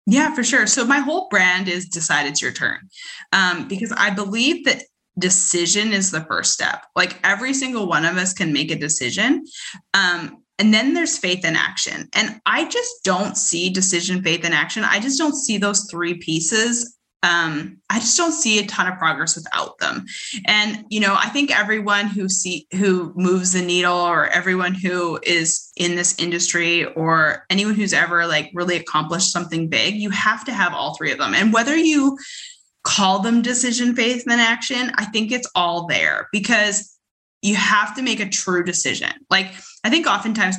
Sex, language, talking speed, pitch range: female, English, 190 wpm, 180-235 Hz